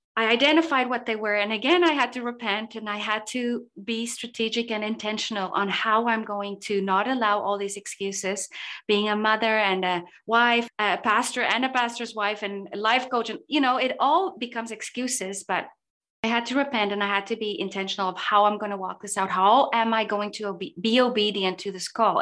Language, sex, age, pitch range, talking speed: English, female, 30-49, 200-245 Hz, 215 wpm